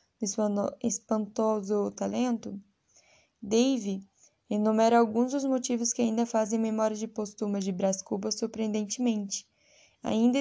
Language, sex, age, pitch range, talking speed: Portuguese, female, 10-29, 215-240 Hz, 110 wpm